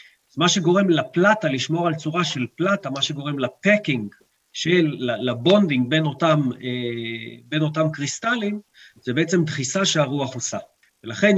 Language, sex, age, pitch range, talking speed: Hebrew, male, 40-59, 125-175 Hz, 130 wpm